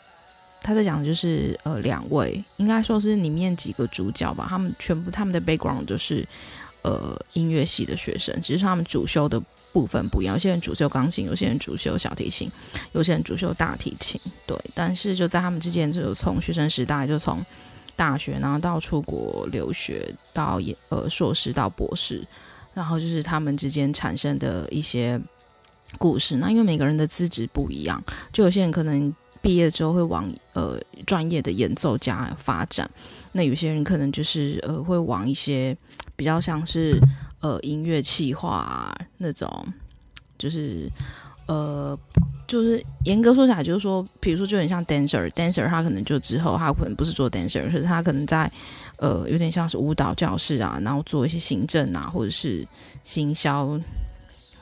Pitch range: 140-175 Hz